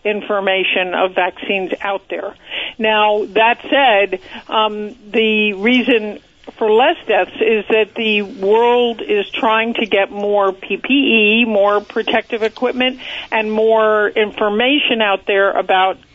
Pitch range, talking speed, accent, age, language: 195-230 Hz, 125 wpm, American, 50-69, English